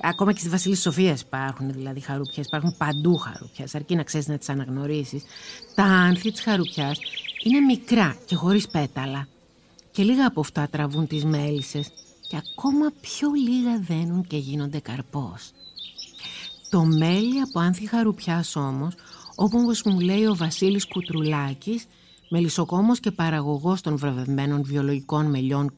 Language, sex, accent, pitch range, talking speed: Greek, female, native, 150-220 Hz, 140 wpm